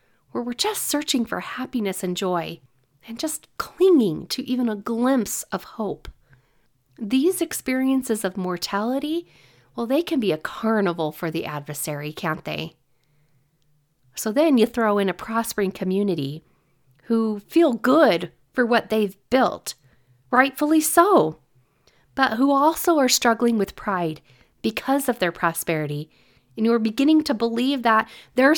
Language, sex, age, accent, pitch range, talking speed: English, female, 40-59, American, 175-270 Hz, 140 wpm